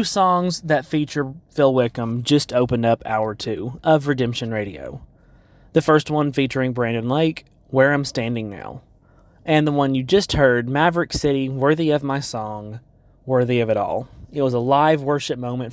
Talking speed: 175 wpm